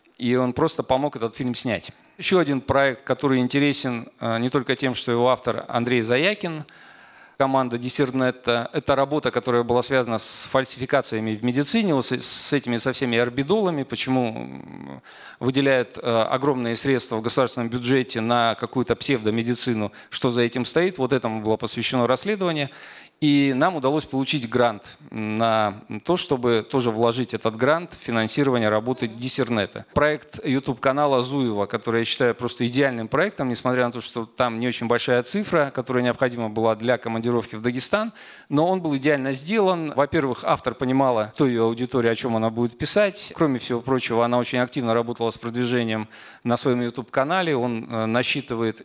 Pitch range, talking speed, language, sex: 120-140 Hz, 155 wpm, Russian, male